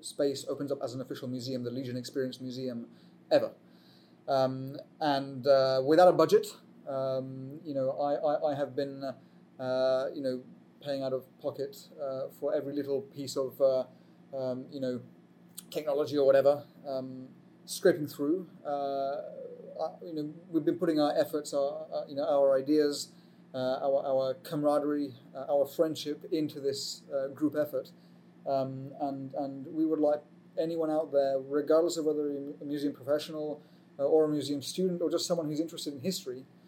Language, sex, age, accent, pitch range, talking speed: English, male, 30-49, British, 135-160 Hz, 170 wpm